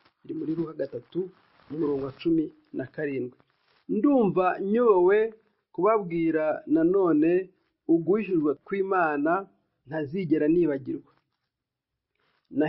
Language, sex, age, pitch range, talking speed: Swahili, male, 50-69, 160-225 Hz, 80 wpm